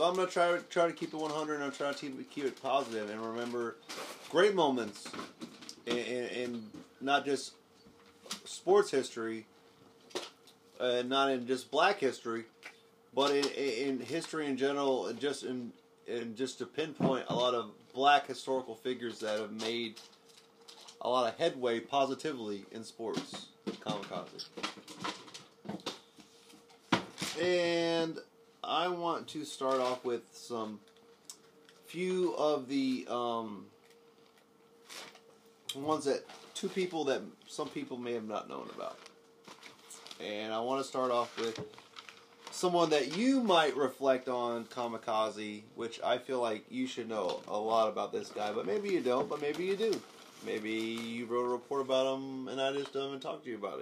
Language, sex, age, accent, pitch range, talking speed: English, male, 30-49, American, 120-165 Hz, 160 wpm